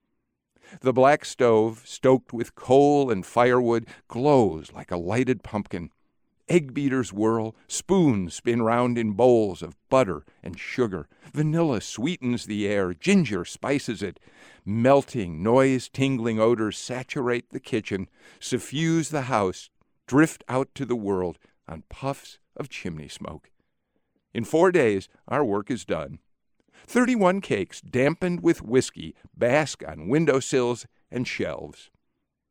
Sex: male